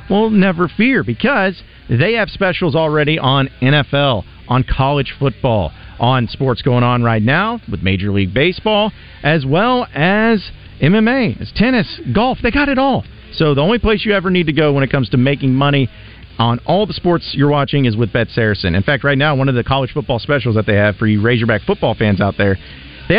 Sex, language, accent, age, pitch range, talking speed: male, English, American, 40-59, 115-170 Hz, 205 wpm